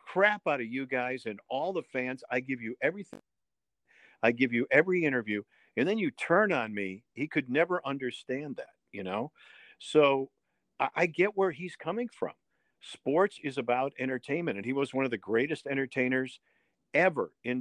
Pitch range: 120-150 Hz